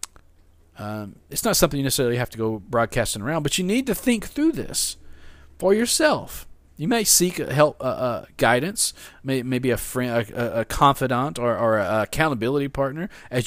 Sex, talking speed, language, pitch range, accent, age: male, 175 wpm, English, 120-170 Hz, American, 40-59